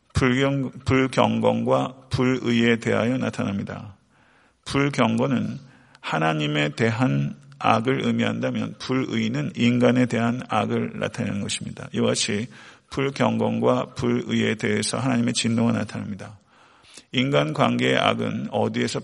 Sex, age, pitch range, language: male, 40-59, 105-130 Hz, Korean